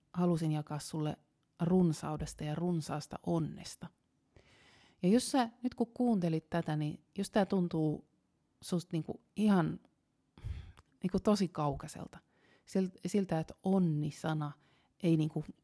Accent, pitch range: native, 150-190 Hz